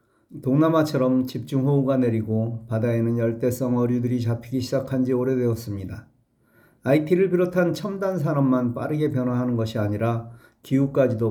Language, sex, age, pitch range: Korean, male, 40-59, 115-145 Hz